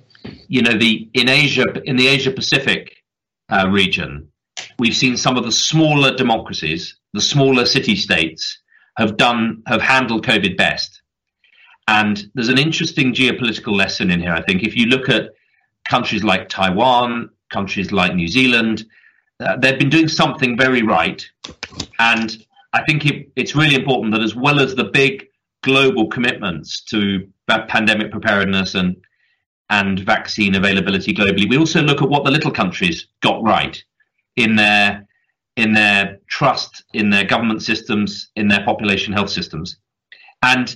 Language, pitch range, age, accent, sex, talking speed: English, 100-130 Hz, 40-59, British, male, 155 wpm